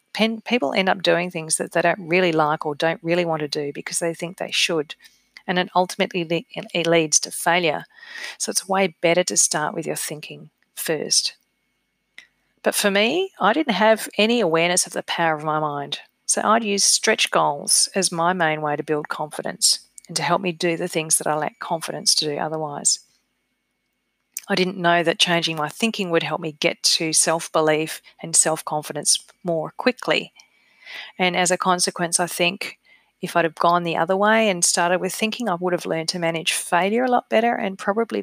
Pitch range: 165-195 Hz